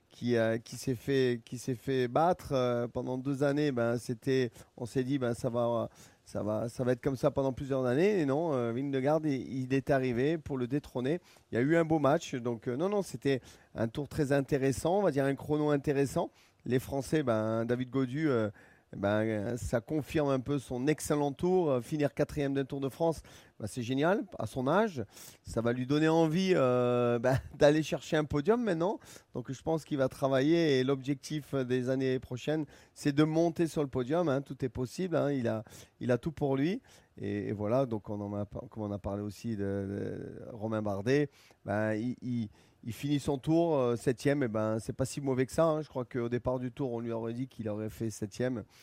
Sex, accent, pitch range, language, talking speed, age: male, French, 120-145 Hz, French, 220 wpm, 30-49